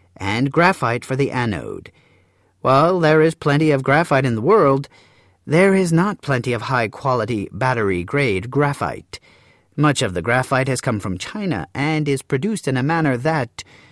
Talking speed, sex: 170 wpm, male